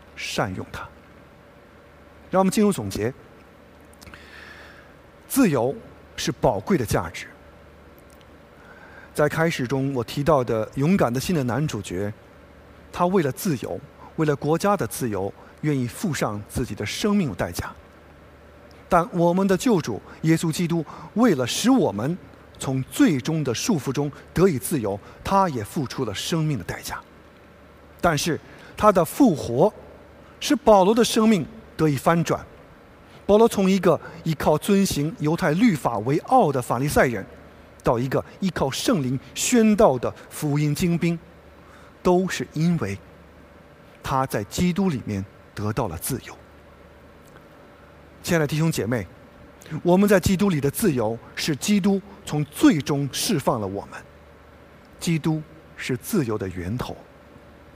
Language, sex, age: English, male, 50-69